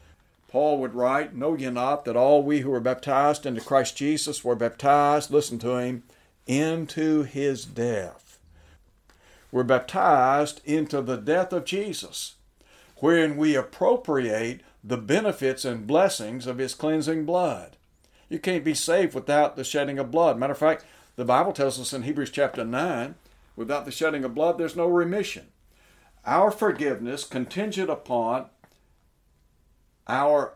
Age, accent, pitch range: 60-79, American, 125-155 Hz